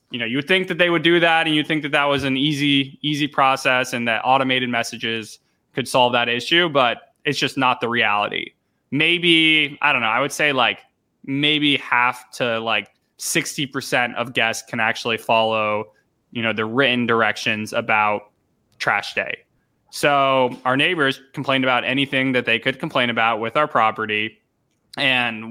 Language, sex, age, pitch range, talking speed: English, male, 20-39, 120-135 Hz, 175 wpm